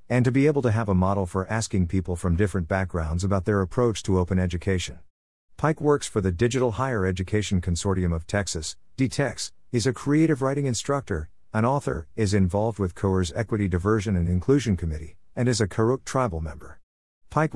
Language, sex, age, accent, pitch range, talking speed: English, male, 50-69, American, 90-115 Hz, 185 wpm